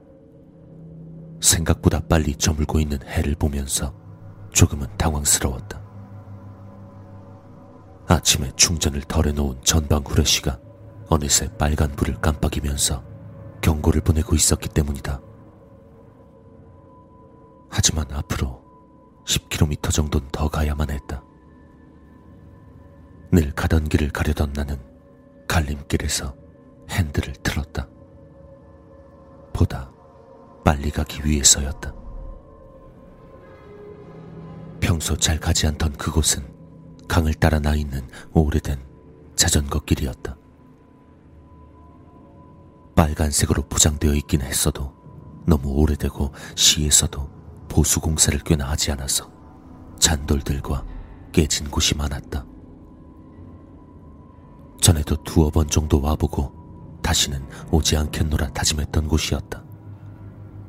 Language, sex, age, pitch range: Korean, male, 40-59, 75-90 Hz